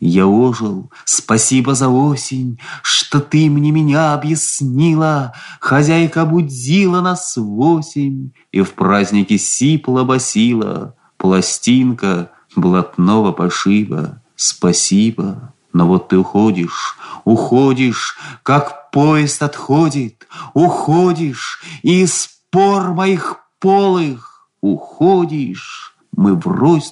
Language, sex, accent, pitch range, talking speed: Russian, male, native, 110-155 Hz, 90 wpm